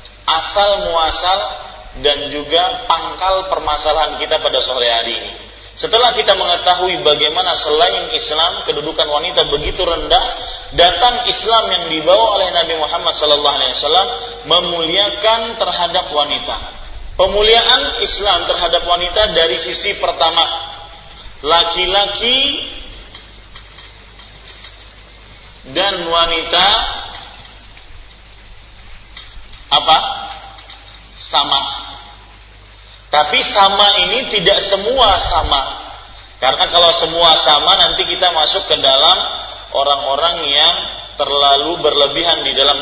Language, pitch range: Malay, 115-180 Hz